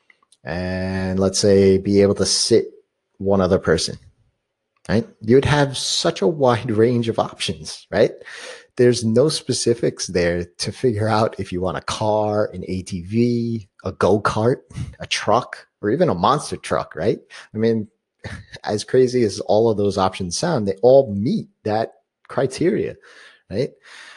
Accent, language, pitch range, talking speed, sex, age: American, English, 95-115 Hz, 150 wpm, male, 30-49